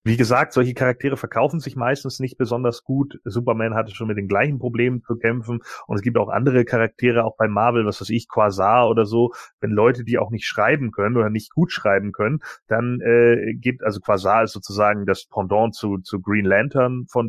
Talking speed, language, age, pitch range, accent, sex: 210 wpm, German, 30-49, 100-120 Hz, German, male